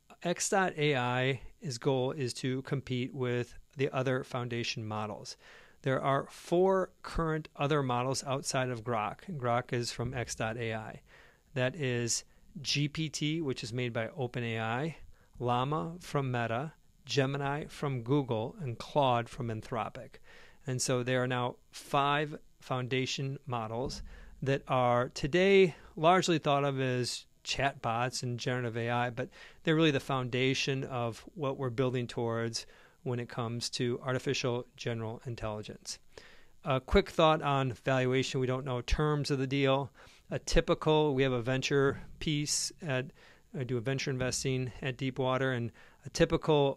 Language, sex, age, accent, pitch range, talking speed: English, male, 40-59, American, 120-145 Hz, 140 wpm